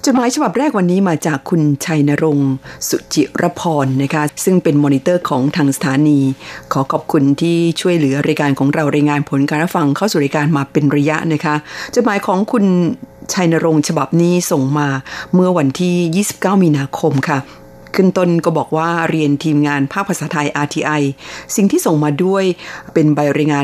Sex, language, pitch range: female, Thai, 145-175 Hz